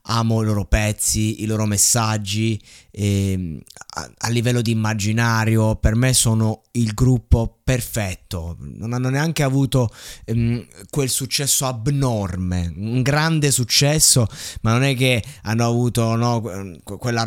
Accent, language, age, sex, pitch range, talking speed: native, Italian, 20-39, male, 105-125 Hz, 130 wpm